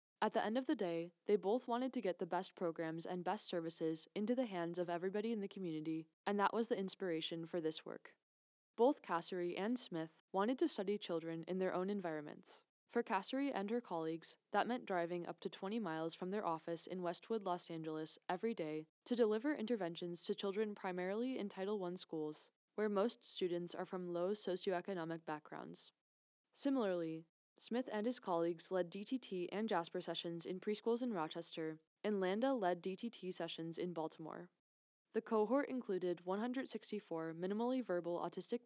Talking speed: 175 wpm